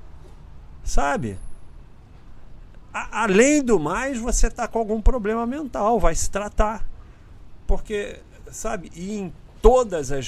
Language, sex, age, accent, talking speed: Portuguese, male, 50-69, Brazilian, 115 wpm